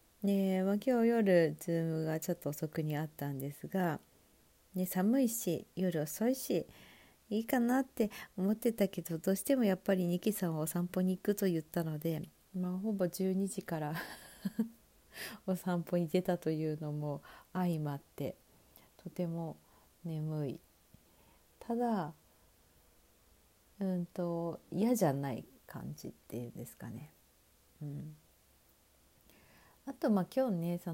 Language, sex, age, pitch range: Japanese, female, 50-69, 155-210 Hz